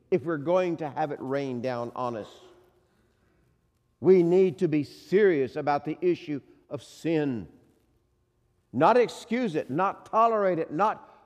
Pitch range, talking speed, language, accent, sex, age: 120-195 Hz, 145 wpm, English, American, male, 60-79